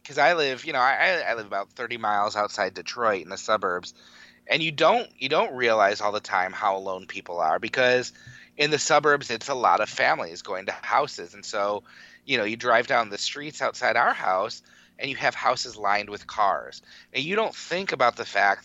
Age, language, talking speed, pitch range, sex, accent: 30-49, English, 215 wpm, 100-125 Hz, male, American